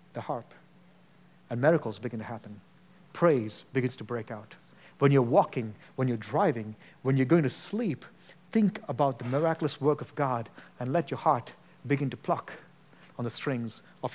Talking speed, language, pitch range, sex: 175 wpm, English, 135-175 Hz, male